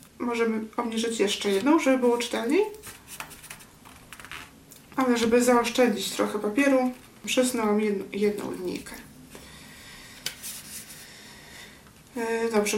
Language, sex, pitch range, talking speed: Polish, female, 210-270 Hz, 75 wpm